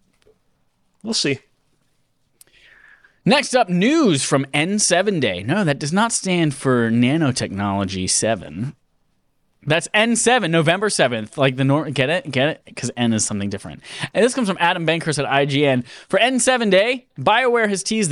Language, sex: English, male